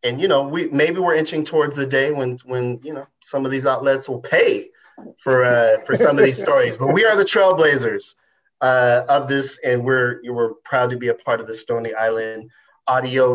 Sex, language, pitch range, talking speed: male, English, 120-170 Hz, 215 wpm